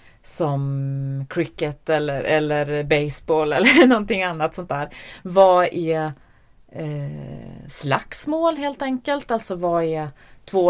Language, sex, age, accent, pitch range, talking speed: English, female, 30-49, Swedish, 140-175 Hz, 105 wpm